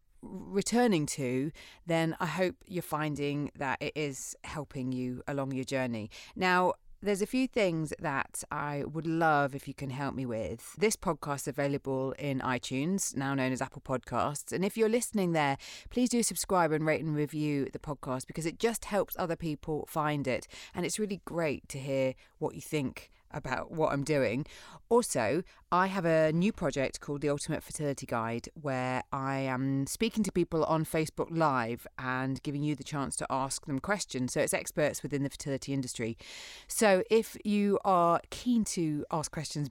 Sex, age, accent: female, 30-49, British